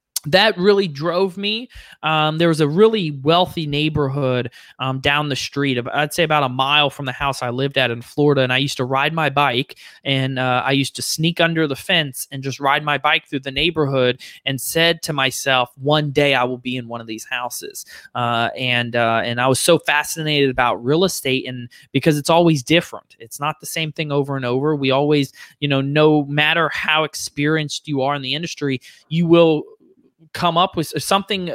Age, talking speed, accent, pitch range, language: 20-39, 210 wpm, American, 135-165 Hz, English